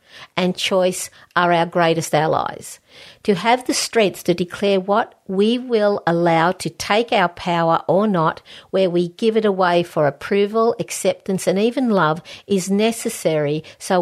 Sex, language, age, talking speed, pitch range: female, English, 50-69, 155 wpm, 170-210 Hz